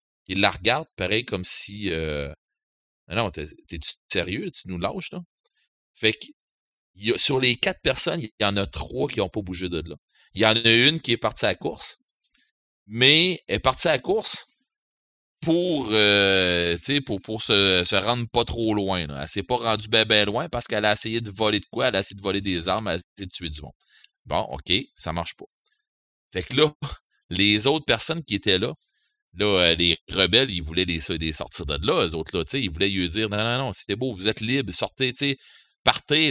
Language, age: French, 30-49